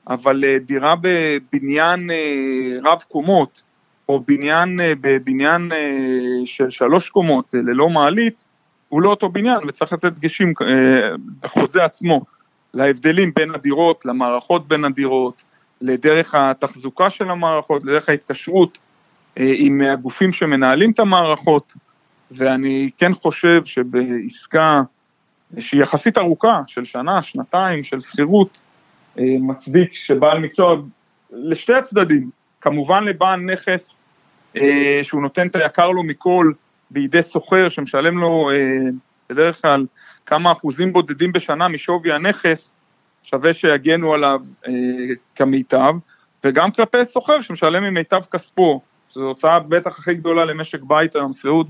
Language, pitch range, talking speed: Hebrew, 140-175 Hz, 115 wpm